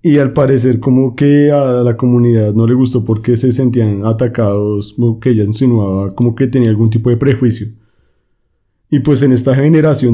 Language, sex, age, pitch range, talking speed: Spanish, male, 30-49, 115-135 Hz, 185 wpm